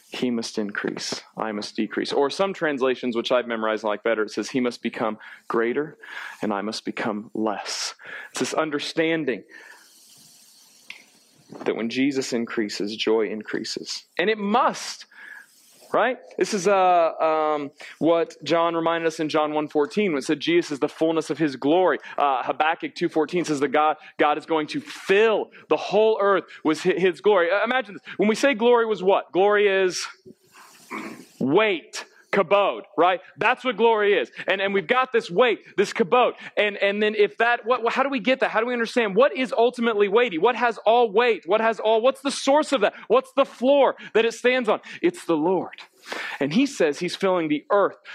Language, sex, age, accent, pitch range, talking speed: English, male, 40-59, American, 155-230 Hz, 190 wpm